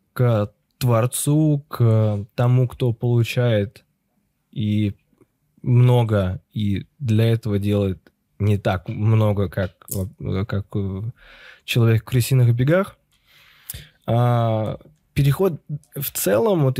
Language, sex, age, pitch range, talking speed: Russian, male, 20-39, 110-135 Hz, 95 wpm